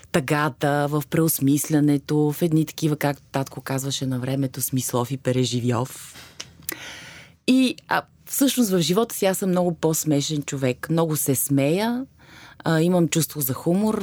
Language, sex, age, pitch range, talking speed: Bulgarian, female, 30-49, 140-180 Hz, 135 wpm